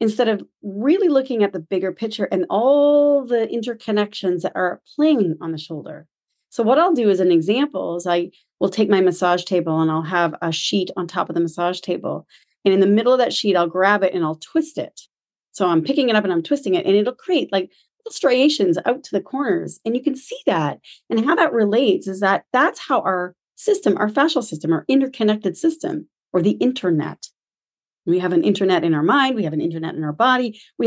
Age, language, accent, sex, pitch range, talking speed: 30-49, English, American, female, 185-270 Hz, 225 wpm